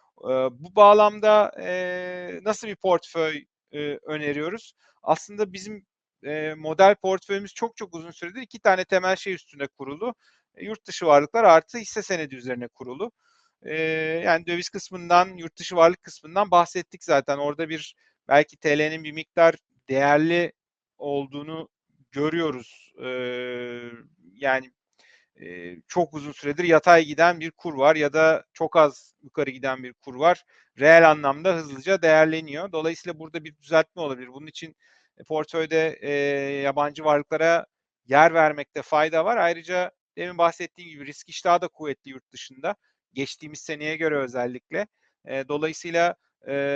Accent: native